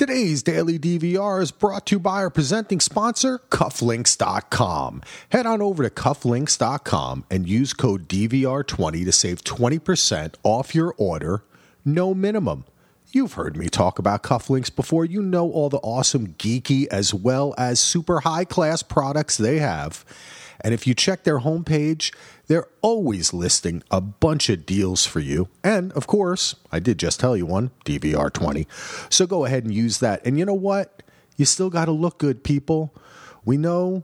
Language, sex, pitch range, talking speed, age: English, male, 110-170 Hz, 165 wpm, 40-59